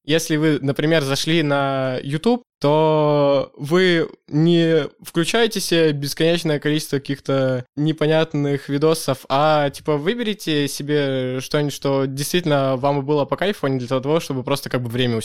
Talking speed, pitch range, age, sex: 140 wpm, 130-155 Hz, 20-39, male